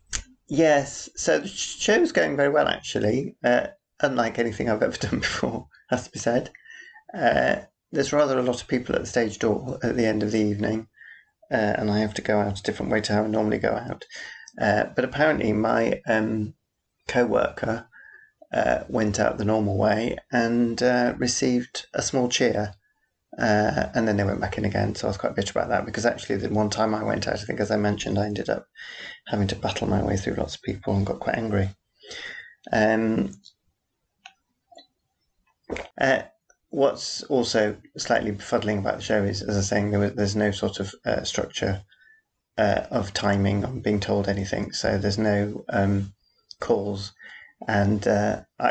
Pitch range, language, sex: 100-125 Hz, English, male